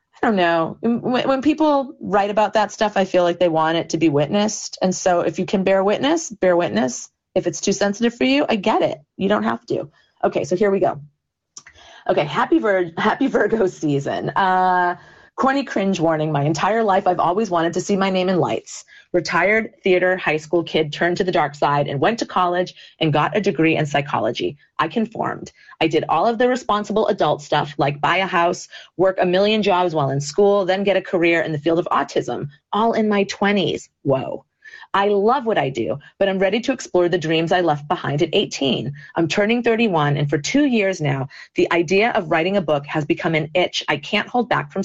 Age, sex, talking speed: 30-49, female, 215 wpm